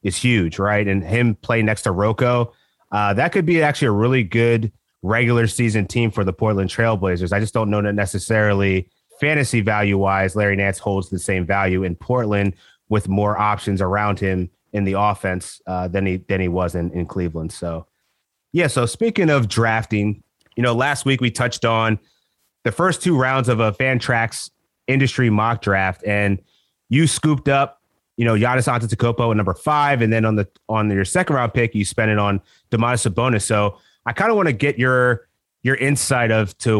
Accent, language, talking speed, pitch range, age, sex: American, English, 190 wpm, 100-125 Hz, 30-49, male